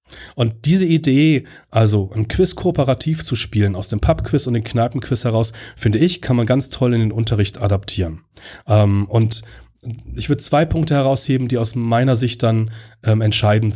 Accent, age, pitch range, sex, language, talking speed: German, 30-49, 110-140 Hz, male, German, 160 wpm